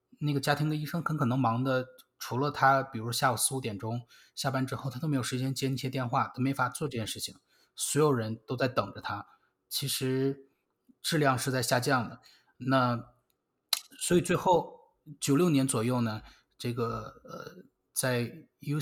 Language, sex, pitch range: Chinese, male, 120-140 Hz